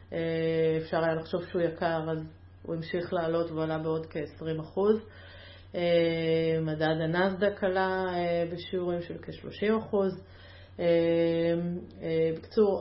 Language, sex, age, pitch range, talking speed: Hebrew, female, 30-49, 165-185 Hz, 90 wpm